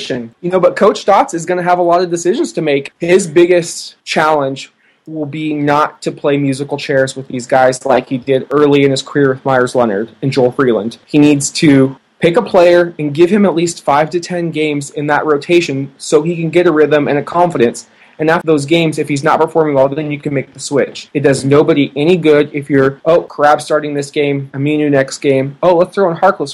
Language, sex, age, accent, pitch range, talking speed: English, male, 20-39, American, 140-165 Hz, 235 wpm